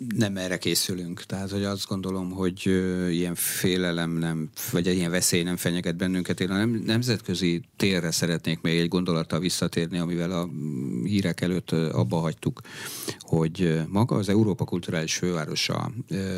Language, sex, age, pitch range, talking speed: Hungarian, male, 50-69, 85-105 Hz, 140 wpm